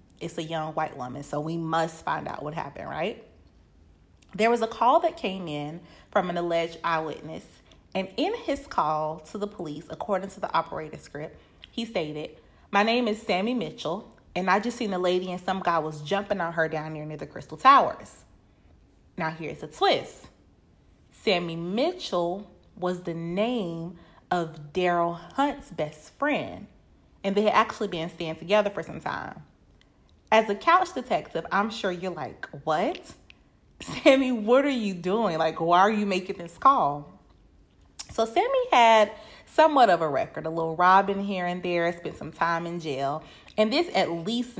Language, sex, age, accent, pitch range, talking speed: English, female, 30-49, American, 160-215 Hz, 175 wpm